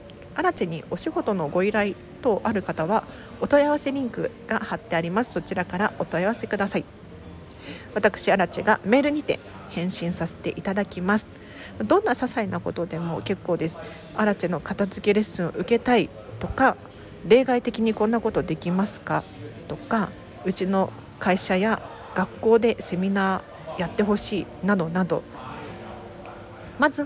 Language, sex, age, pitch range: Japanese, female, 50-69, 165-220 Hz